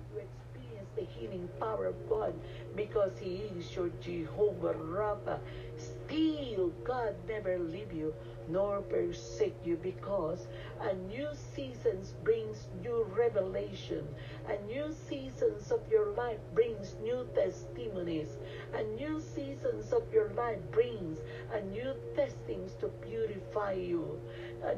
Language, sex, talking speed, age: English, female, 120 wpm, 50-69